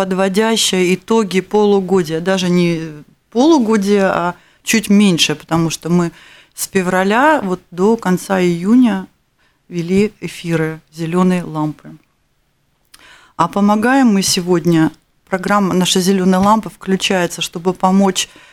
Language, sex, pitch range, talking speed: Russian, female, 170-200 Hz, 105 wpm